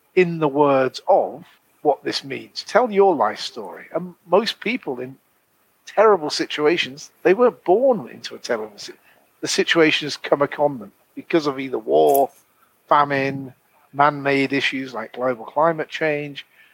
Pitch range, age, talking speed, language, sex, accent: 130-160 Hz, 50-69, 145 wpm, English, male, British